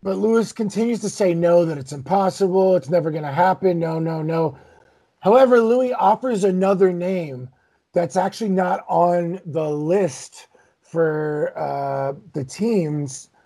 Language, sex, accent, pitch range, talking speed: English, male, American, 160-205 Hz, 145 wpm